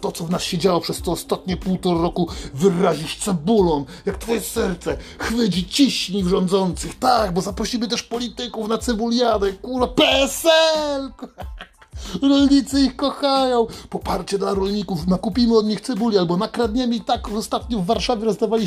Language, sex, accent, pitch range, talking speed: Polish, male, native, 170-245 Hz, 150 wpm